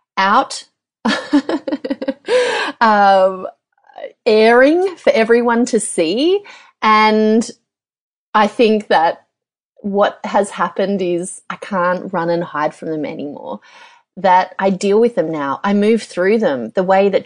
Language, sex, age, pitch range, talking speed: English, female, 30-49, 180-245 Hz, 125 wpm